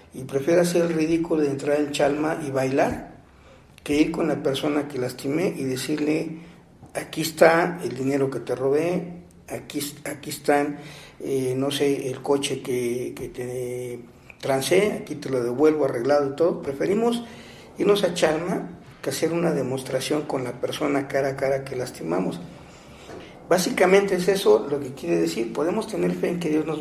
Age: 50-69